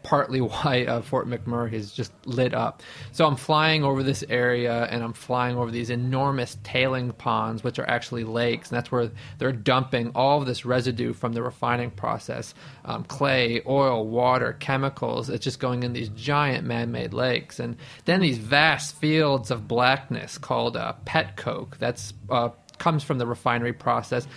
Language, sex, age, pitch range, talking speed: English, male, 30-49, 120-145 Hz, 180 wpm